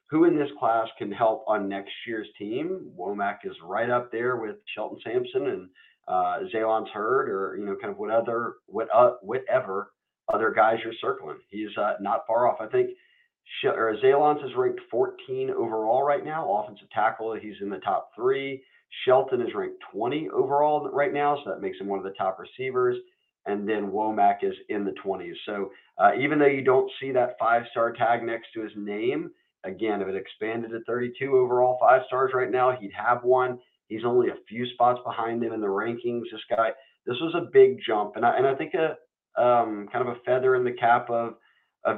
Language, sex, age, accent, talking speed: English, male, 40-59, American, 200 wpm